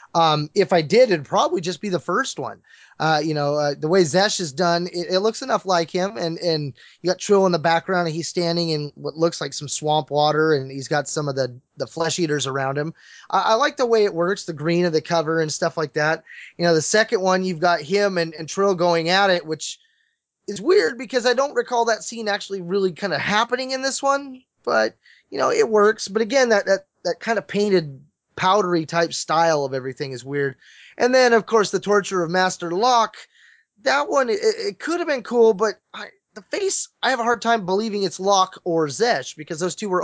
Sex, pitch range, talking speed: male, 165-220 Hz, 235 wpm